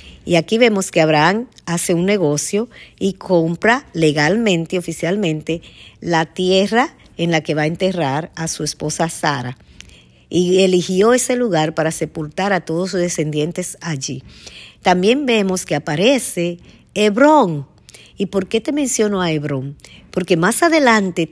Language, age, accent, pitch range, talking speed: Spanish, 50-69, American, 150-200 Hz, 140 wpm